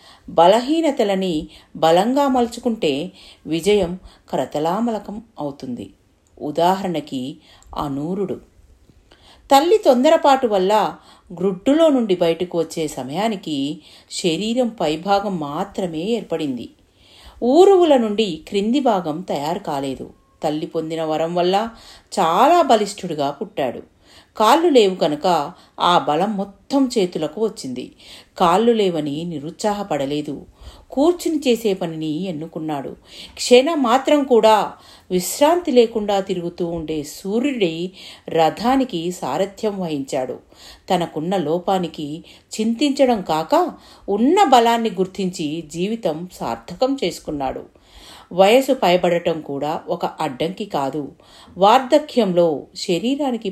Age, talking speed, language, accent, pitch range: 50-69, 85 wpm, Telugu, native, 160-235 Hz